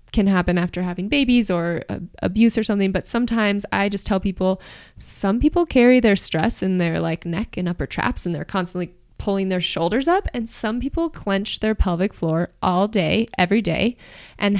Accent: American